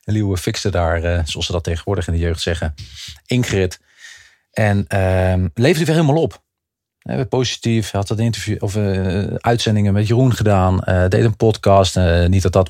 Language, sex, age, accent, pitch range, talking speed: English, male, 40-59, Dutch, 95-115 Hz, 190 wpm